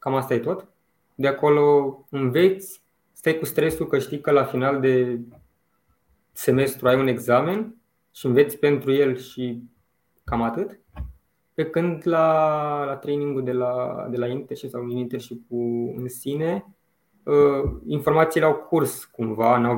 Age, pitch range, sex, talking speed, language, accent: 20-39, 120-155 Hz, male, 150 wpm, Romanian, native